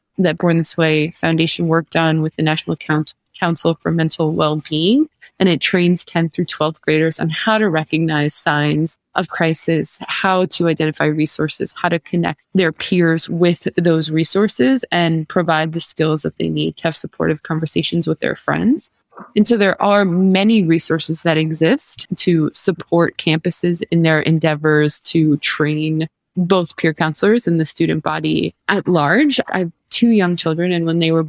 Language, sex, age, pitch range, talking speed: English, female, 20-39, 160-190 Hz, 170 wpm